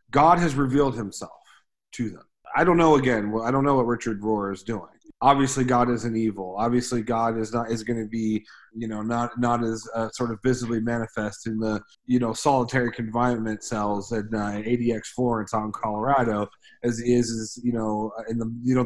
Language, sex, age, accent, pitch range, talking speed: English, male, 30-49, American, 115-135 Hz, 190 wpm